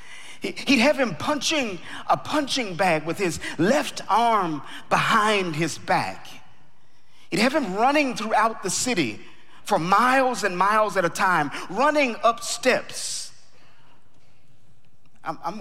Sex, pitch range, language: male, 130-205 Hz, English